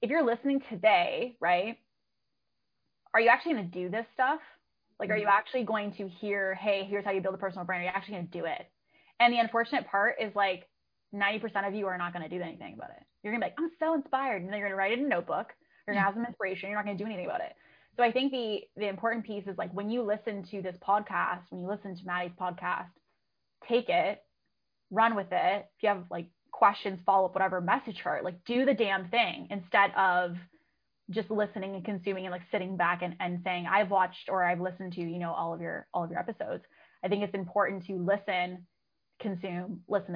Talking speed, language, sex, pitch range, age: 240 wpm, English, female, 185-225 Hz, 20-39